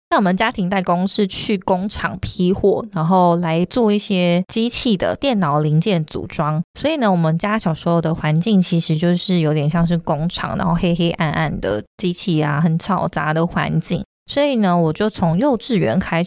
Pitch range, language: 165-200 Hz, Chinese